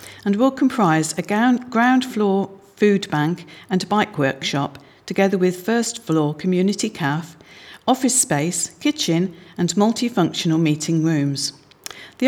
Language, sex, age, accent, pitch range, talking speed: English, female, 50-69, British, 160-220 Hz, 120 wpm